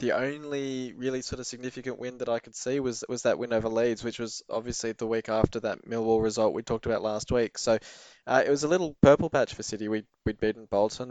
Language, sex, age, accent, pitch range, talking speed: English, male, 20-39, Australian, 105-120 Hz, 245 wpm